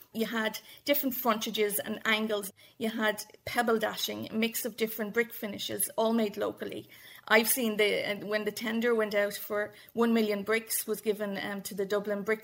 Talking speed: 185 wpm